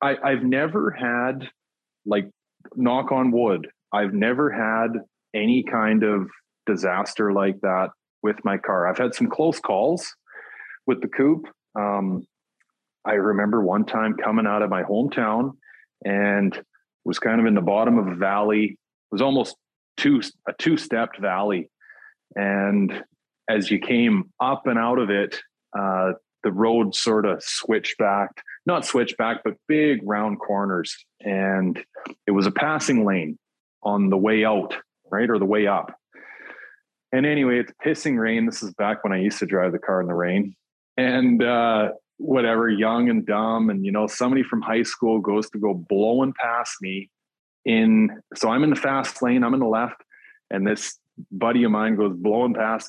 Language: English